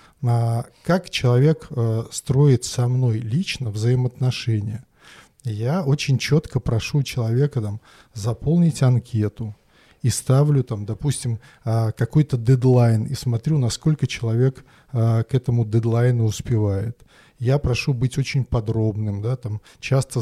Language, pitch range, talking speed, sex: Russian, 115-130 Hz, 100 wpm, male